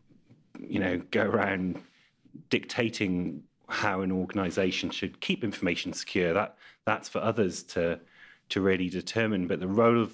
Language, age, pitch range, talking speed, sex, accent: English, 30-49, 90-100 Hz, 140 wpm, male, British